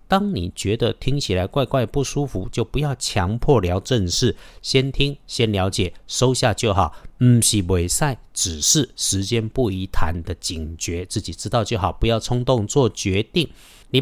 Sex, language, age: male, Chinese, 50-69